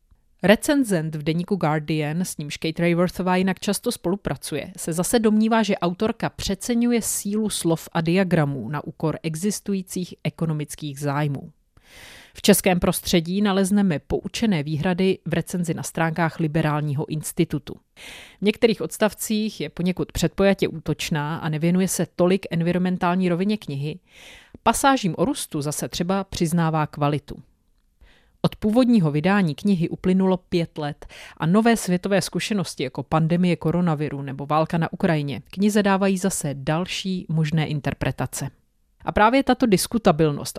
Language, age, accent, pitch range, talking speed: Czech, 30-49, native, 155-195 Hz, 130 wpm